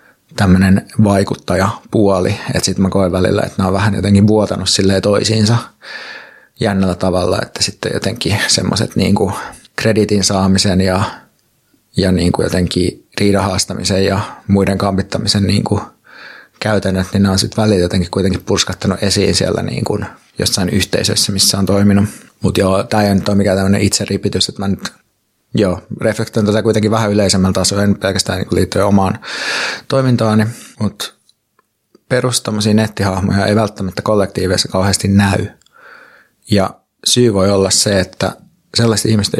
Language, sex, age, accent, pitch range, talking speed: Finnish, male, 30-49, native, 95-105 Hz, 135 wpm